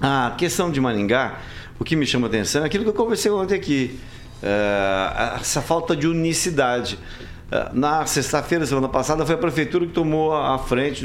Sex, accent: male, Brazilian